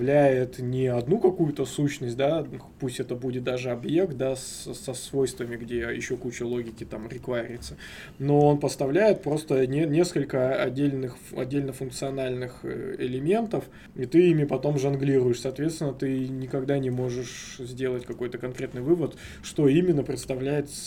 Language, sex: Russian, male